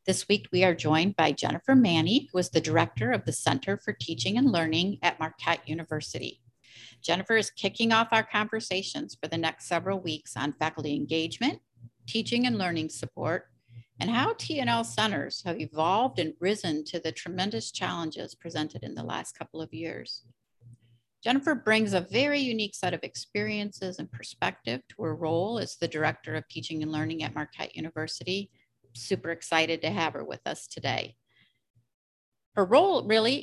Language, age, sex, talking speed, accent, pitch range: English, 50-69, female, 165 wpm, American, 155-200 Hz